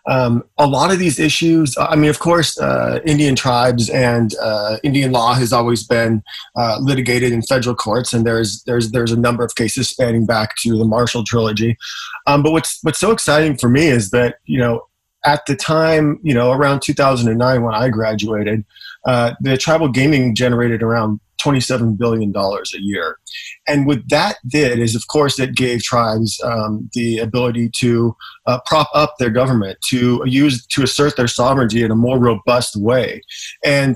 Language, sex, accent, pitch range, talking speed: English, male, American, 115-140 Hz, 180 wpm